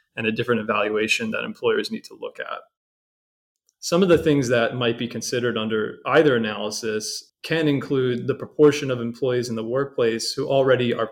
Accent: American